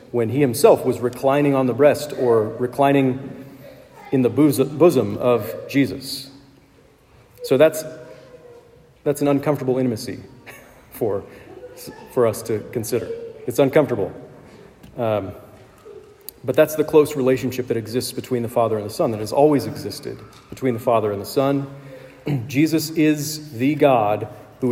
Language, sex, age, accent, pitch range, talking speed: English, male, 40-59, American, 115-145 Hz, 140 wpm